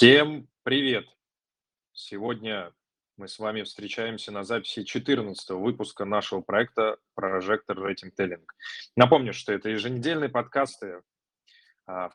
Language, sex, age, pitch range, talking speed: Russian, male, 20-39, 105-130 Hz, 115 wpm